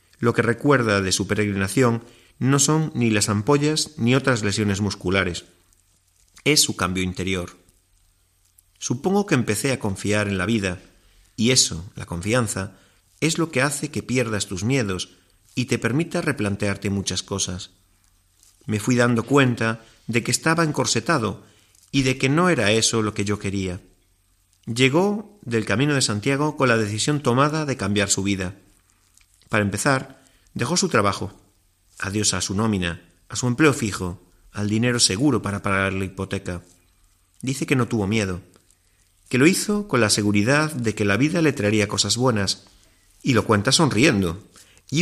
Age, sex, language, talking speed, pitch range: 40-59, male, Spanish, 160 wpm, 95-125 Hz